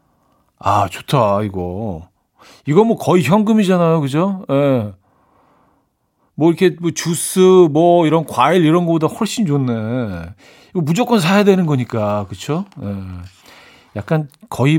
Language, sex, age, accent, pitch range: Korean, male, 40-59, native, 115-165 Hz